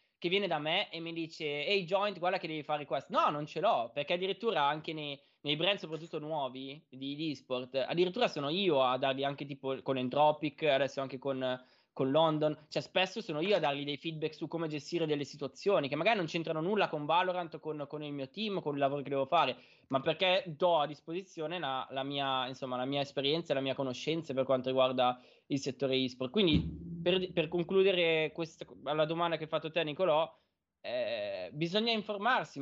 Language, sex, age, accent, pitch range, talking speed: Italian, male, 20-39, native, 140-180 Hz, 205 wpm